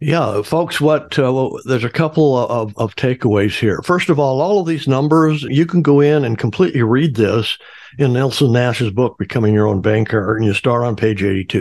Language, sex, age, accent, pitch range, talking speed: English, male, 60-79, American, 120-150 Hz, 210 wpm